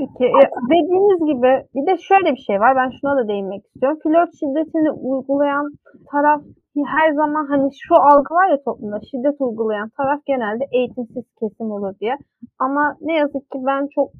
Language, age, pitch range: Turkish, 30-49, 235-285 Hz